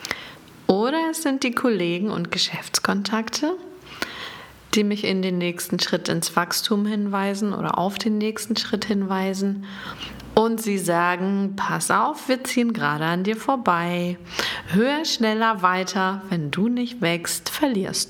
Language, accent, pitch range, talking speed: German, German, 175-225 Hz, 135 wpm